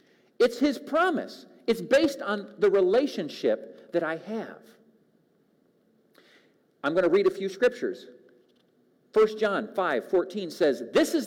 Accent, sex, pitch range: American, male, 200-290 Hz